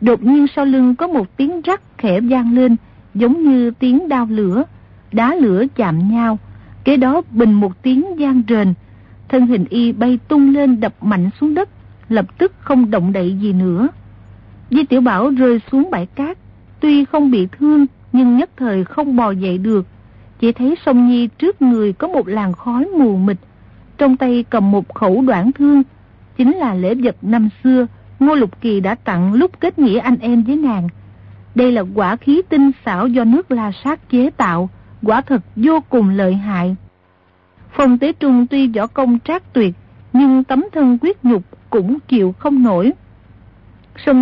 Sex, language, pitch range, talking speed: female, Vietnamese, 205-275 Hz, 185 wpm